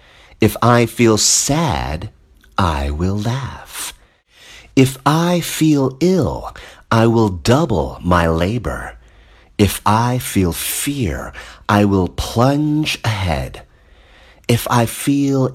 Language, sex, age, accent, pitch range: Chinese, male, 40-59, American, 90-130 Hz